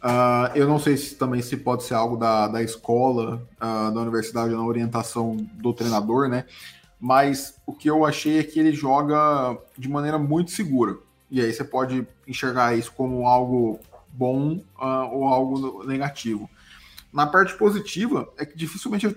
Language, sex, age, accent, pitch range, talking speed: Portuguese, male, 20-39, Brazilian, 120-150 Hz, 155 wpm